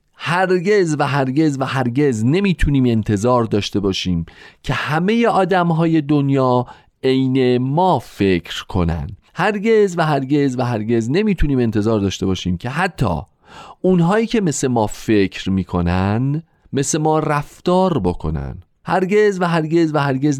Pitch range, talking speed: 100-155 Hz, 125 wpm